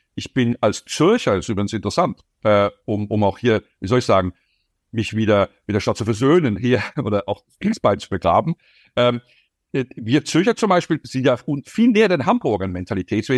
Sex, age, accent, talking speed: male, 60-79, German, 195 wpm